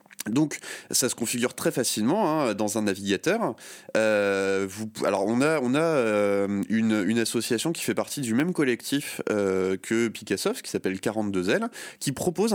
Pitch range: 95-135 Hz